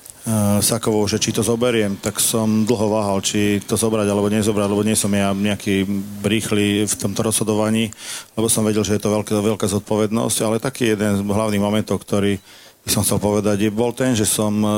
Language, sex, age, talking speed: Slovak, male, 40-59, 190 wpm